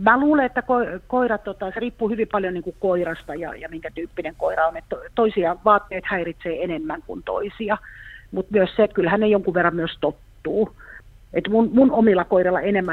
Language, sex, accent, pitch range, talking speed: Finnish, female, native, 165-200 Hz, 195 wpm